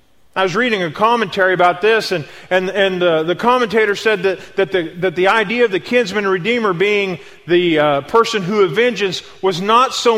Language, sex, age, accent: English, male, 40-59, American